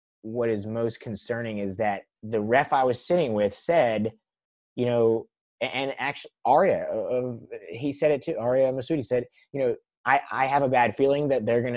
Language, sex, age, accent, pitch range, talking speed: English, male, 20-39, American, 110-135 Hz, 195 wpm